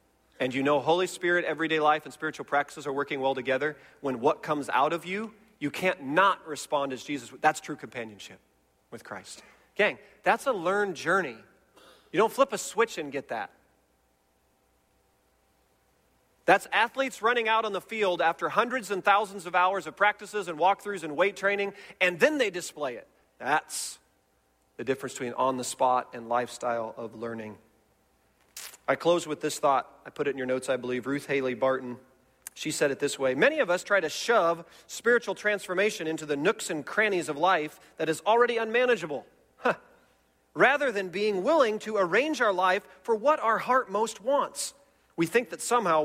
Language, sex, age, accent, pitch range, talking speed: English, male, 40-59, American, 130-200 Hz, 180 wpm